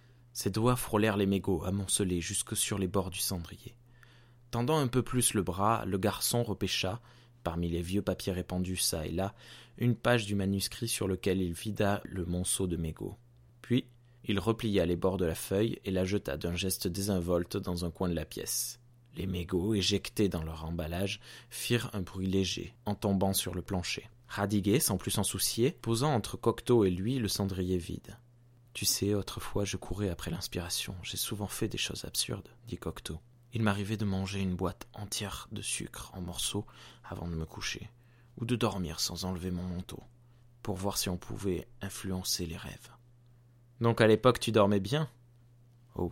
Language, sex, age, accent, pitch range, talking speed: French, male, 20-39, French, 95-120 Hz, 185 wpm